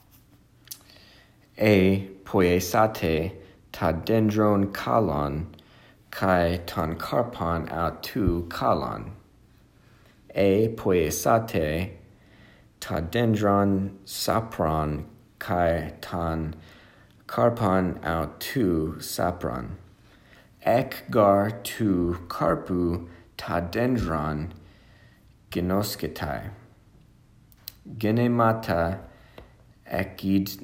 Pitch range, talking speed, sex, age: 85-115 Hz, 55 wpm, male, 50-69